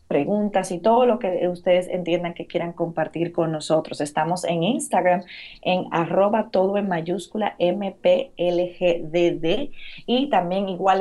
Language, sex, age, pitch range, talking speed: Spanish, female, 30-49, 170-205 Hz, 130 wpm